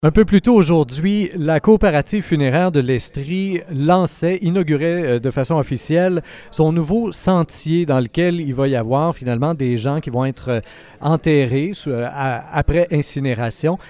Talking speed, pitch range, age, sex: 145 wpm, 145-195 Hz, 40-59, male